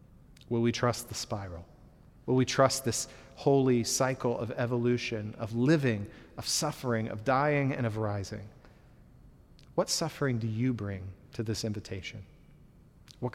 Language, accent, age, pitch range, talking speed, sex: English, American, 40-59, 110-135 Hz, 140 wpm, male